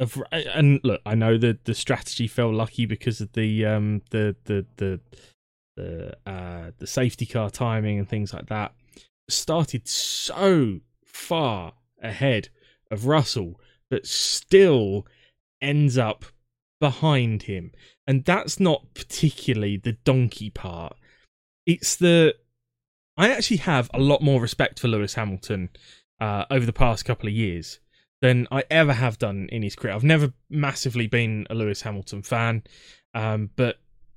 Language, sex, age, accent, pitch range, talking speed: English, male, 20-39, British, 110-150 Hz, 145 wpm